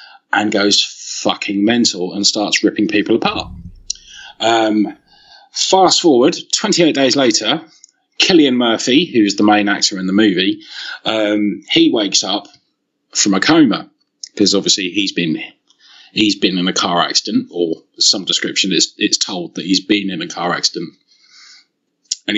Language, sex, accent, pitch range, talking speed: English, male, British, 95-115 Hz, 145 wpm